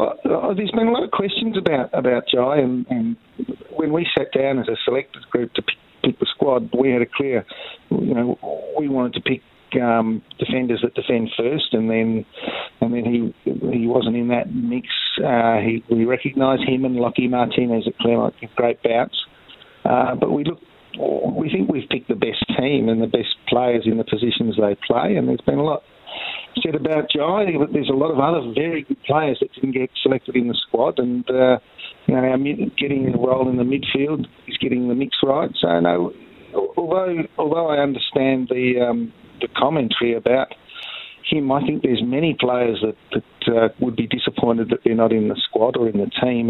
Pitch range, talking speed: 115-140 Hz, 200 wpm